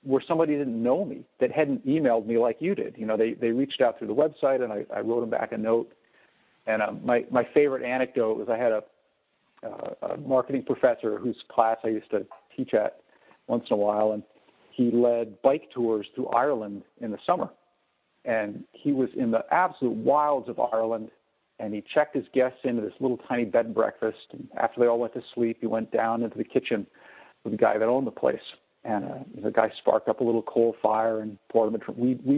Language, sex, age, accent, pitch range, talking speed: English, male, 50-69, American, 115-140 Hz, 225 wpm